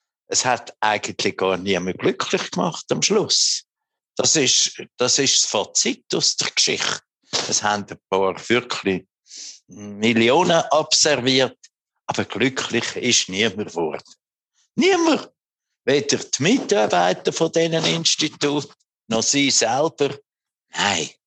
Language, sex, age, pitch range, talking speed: German, male, 60-79, 110-185 Hz, 115 wpm